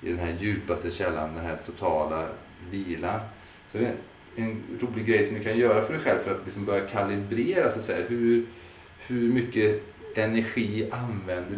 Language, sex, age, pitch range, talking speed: Swedish, male, 30-49, 90-115 Hz, 165 wpm